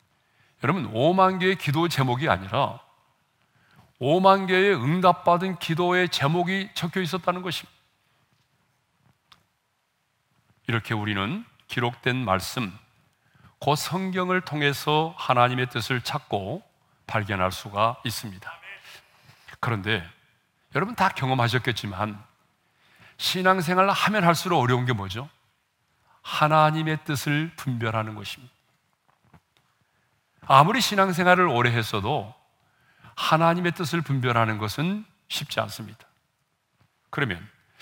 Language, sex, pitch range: Korean, male, 115-175 Hz